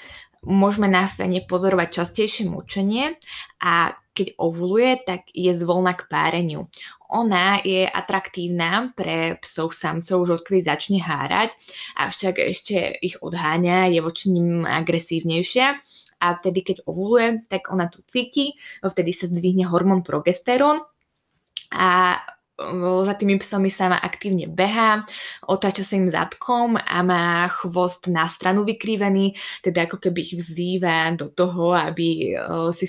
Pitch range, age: 175-200 Hz, 20-39